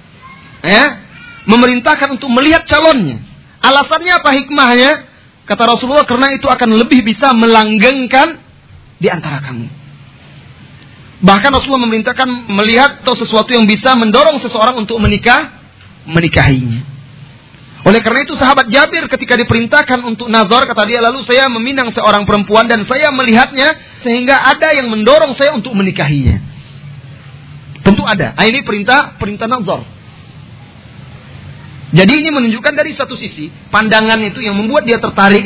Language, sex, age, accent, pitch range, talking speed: Indonesian, male, 30-49, native, 165-250 Hz, 130 wpm